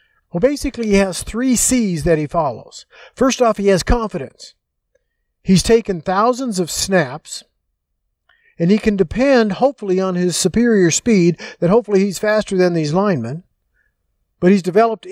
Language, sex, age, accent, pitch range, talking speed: English, male, 50-69, American, 170-230 Hz, 150 wpm